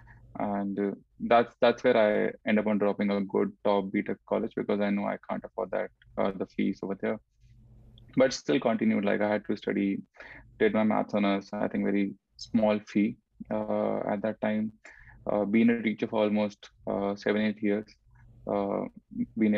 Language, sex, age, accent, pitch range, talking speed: English, male, 20-39, Indian, 105-115 Hz, 185 wpm